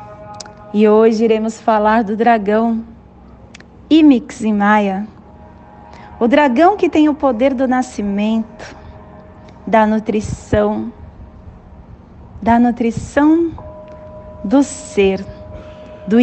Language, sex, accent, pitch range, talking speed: Portuguese, female, Brazilian, 205-275 Hz, 85 wpm